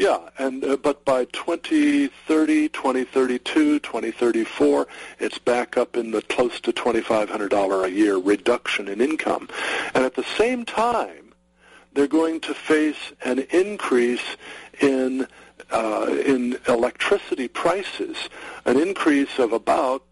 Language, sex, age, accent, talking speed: English, male, 50-69, American, 120 wpm